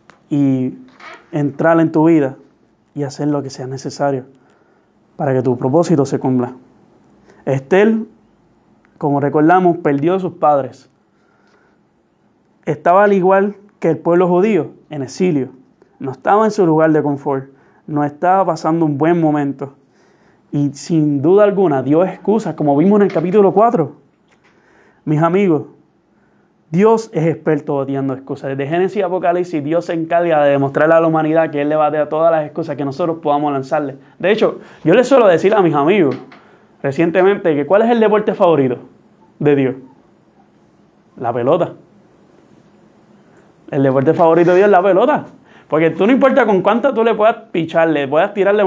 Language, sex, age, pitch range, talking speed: Spanish, male, 30-49, 145-185 Hz, 160 wpm